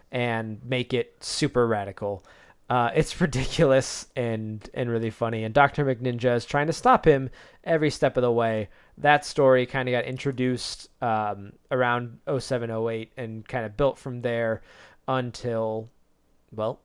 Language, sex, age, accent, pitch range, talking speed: English, male, 20-39, American, 115-145 Hz, 150 wpm